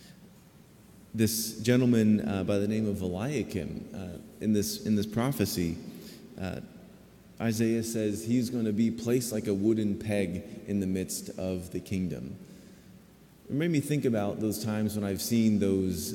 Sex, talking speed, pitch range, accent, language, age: male, 160 wpm, 95-115 Hz, American, English, 30-49